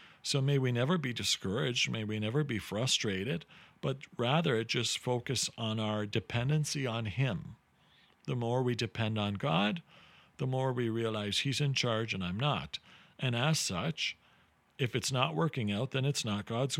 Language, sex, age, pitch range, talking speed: English, male, 40-59, 110-145 Hz, 170 wpm